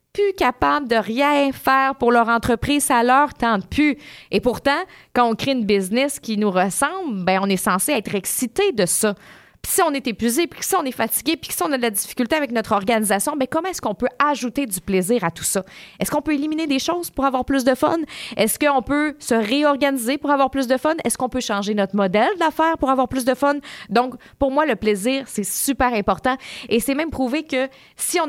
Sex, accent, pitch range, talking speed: female, Canadian, 210-275 Hz, 235 wpm